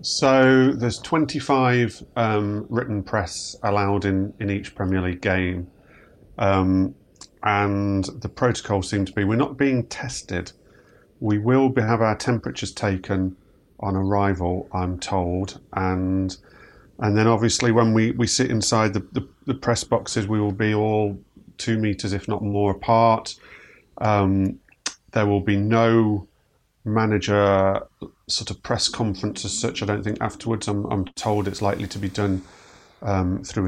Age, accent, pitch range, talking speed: 30-49, British, 95-110 Hz, 150 wpm